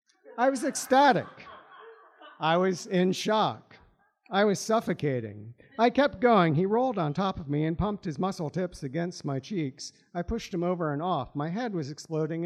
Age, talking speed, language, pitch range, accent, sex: 50-69, 180 wpm, English, 145-195 Hz, American, male